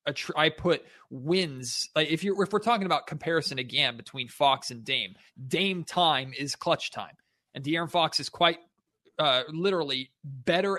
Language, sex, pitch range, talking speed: English, male, 125-165 Hz, 170 wpm